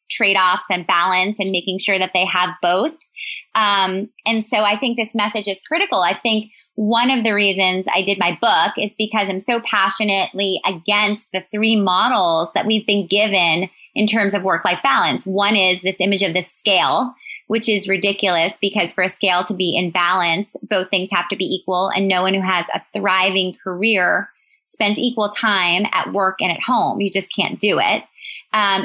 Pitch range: 185-220 Hz